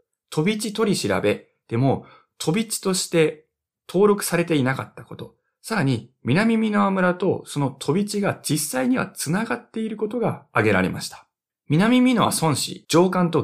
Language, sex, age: Japanese, male, 20-39